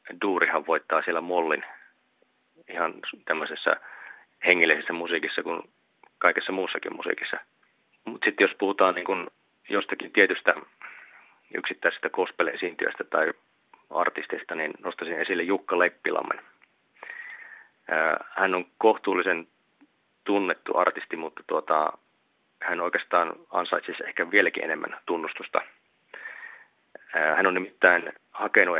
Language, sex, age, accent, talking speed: Finnish, male, 30-49, native, 95 wpm